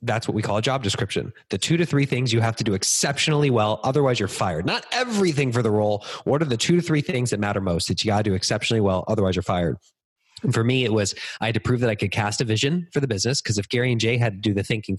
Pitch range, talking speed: 105-140 Hz, 295 wpm